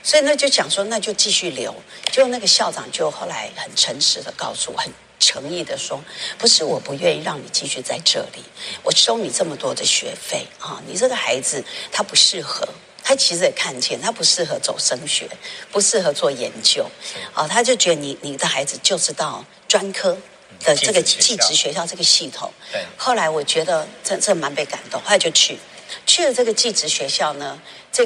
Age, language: 50-69, Chinese